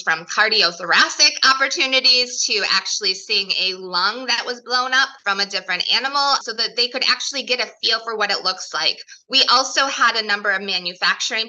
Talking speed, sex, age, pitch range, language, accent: 190 wpm, female, 20-39, 200-255 Hz, English, American